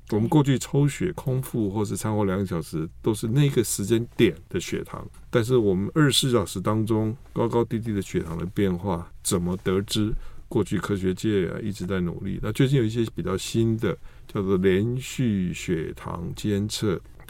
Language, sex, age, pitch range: Chinese, male, 50-69, 95-120 Hz